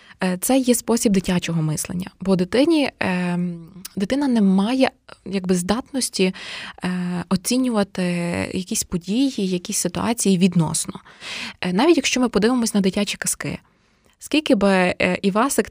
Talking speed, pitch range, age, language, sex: 105 wpm, 190-245 Hz, 20-39, Ukrainian, female